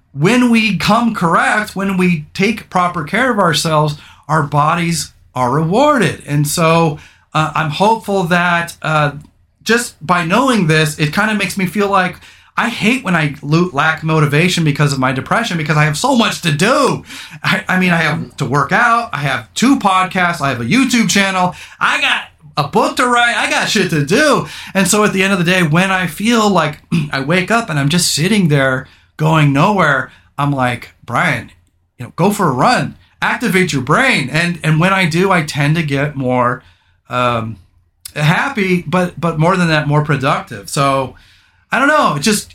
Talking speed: 195 wpm